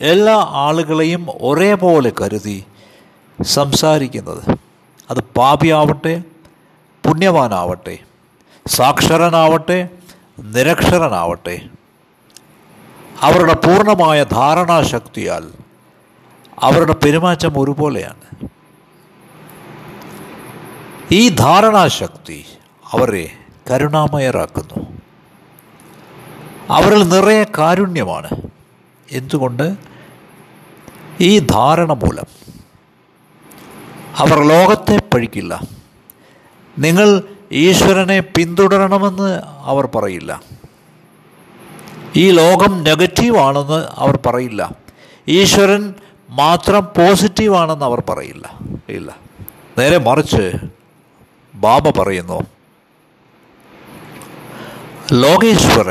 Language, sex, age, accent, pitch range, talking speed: Malayalam, male, 60-79, native, 145-195 Hz, 55 wpm